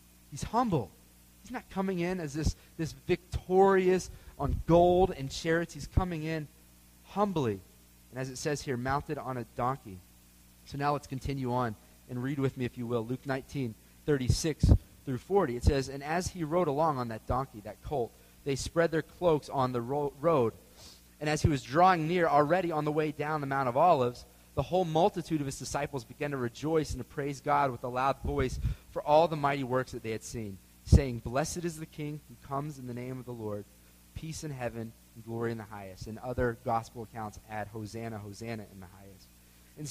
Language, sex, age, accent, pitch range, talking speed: English, male, 30-49, American, 110-155 Hz, 205 wpm